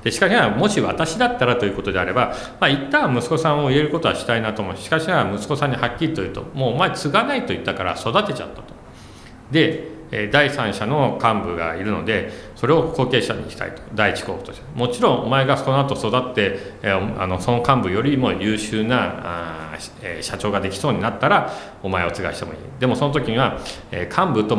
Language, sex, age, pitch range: Japanese, male, 40-59, 90-135 Hz